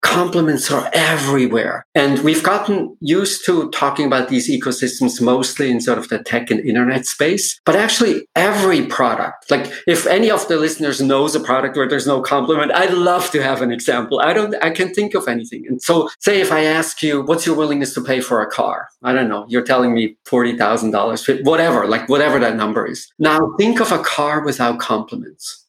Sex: male